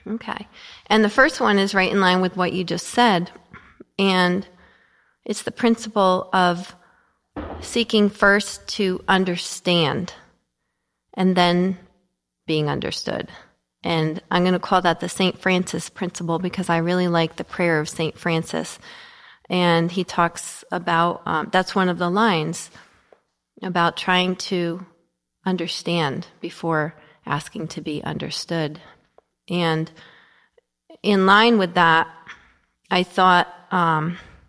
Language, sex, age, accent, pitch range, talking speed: English, female, 30-49, American, 170-195 Hz, 125 wpm